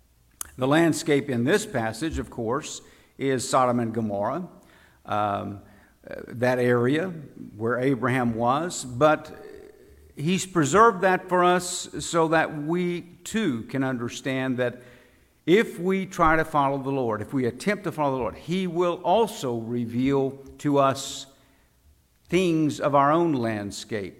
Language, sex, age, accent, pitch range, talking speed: English, male, 60-79, American, 120-160 Hz, 135 wpm